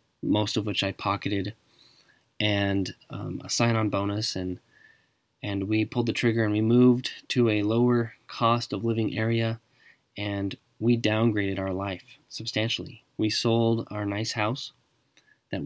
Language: English